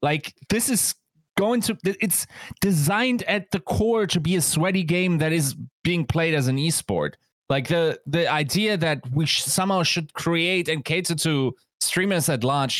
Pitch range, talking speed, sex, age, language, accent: 125-170 Hz, 180 wpm, male, 20-39, English, German